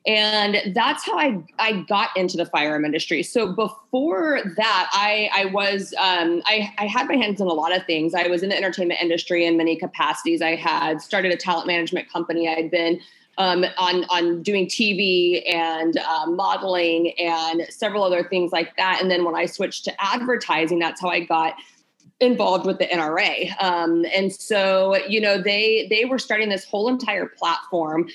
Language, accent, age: English, American, 30-49